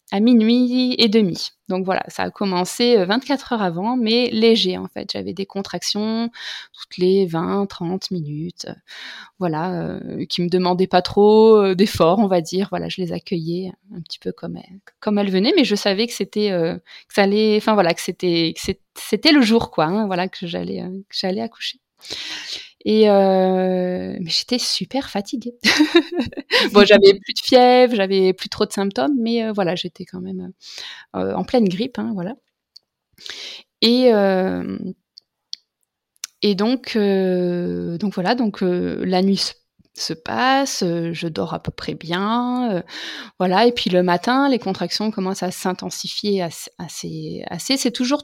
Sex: female